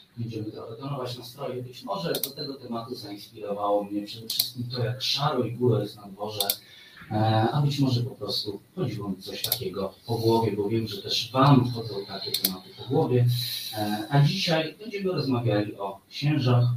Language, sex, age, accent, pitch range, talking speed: Polish, male, 30-49, native, 105-130 Hz, 175 wpm